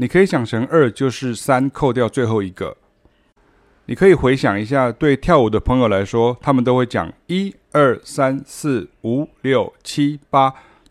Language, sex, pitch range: Chinese, male, 110-140 Hz